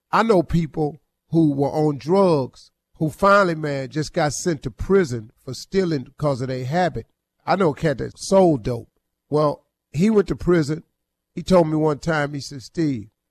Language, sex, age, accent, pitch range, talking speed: English, male, 40-59, American, 120-160 Hz, 185 wpm